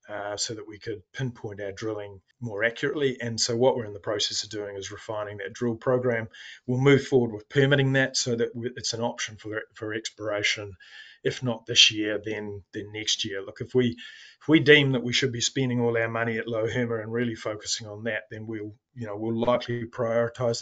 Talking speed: 220 wpm